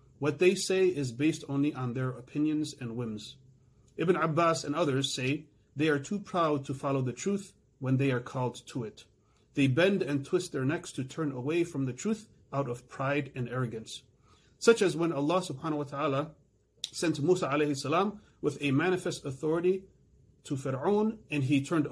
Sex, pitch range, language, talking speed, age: male, 130-165 Hz, English, 180 wpm, 30-49